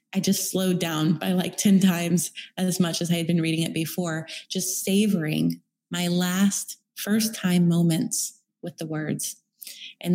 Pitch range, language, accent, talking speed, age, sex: 175-210 Hz, English, American, 165 wpm, 20-39, female